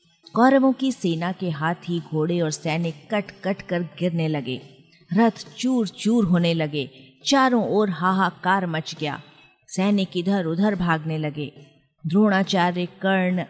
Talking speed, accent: 140 wpm, native